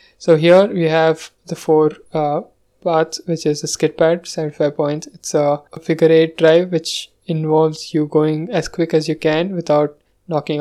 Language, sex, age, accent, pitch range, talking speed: English, male, 20-39, Indian, 150-165 Hz, 180 wpm